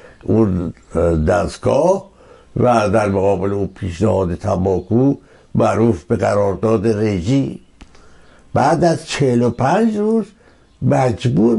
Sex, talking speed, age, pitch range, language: male, 90 wpm, 60-79, 110-165 Hz, Persian